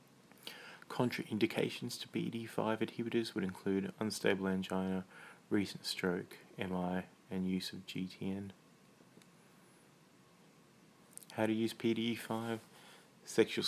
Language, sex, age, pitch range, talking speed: English, male, 20-39, 95-110 Hz, 90 wpm